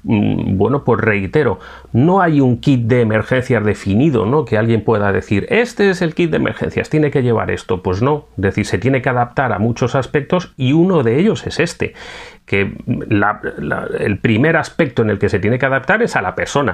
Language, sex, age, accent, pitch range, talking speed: Spanish, male, 30-49, Spanish, 100-130 Hz, 210 wpm